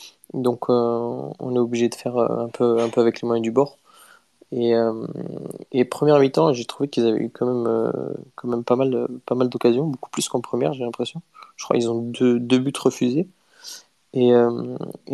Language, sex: French, male